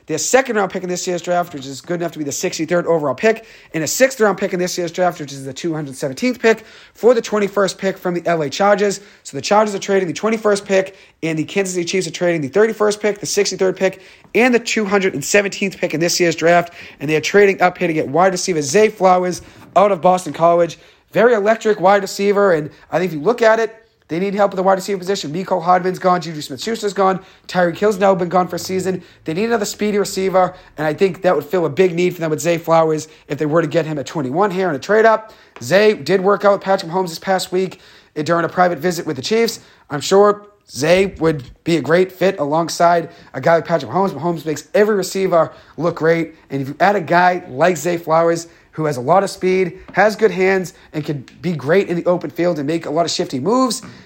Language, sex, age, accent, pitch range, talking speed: English, male, 40-59, American, 160-195 Hz, 240 wpm